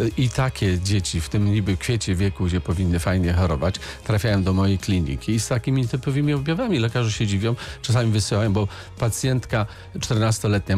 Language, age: Polish, 40-59